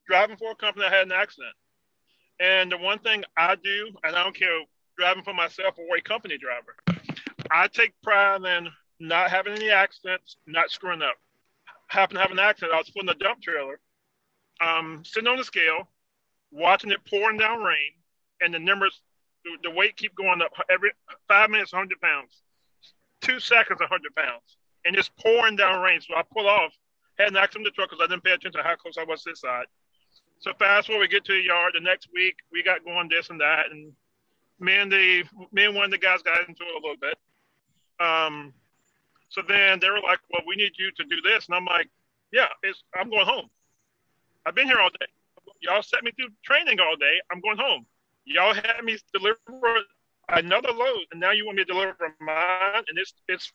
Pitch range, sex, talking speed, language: 175-215 Hz, male, 210 wpm, English